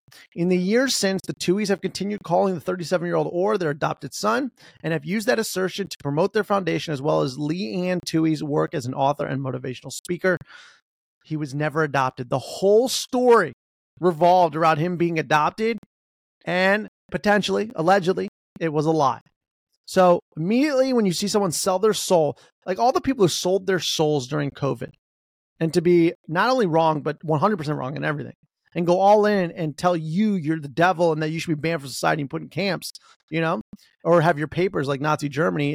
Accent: American